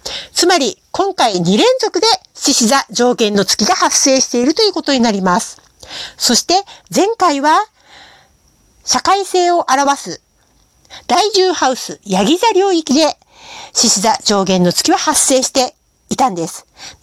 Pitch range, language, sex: 220-350 Hz, Japanese, female